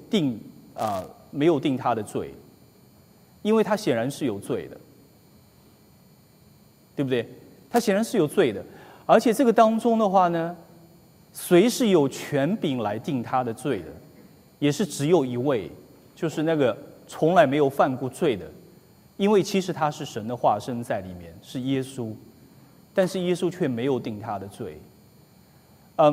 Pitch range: 130-190 Hz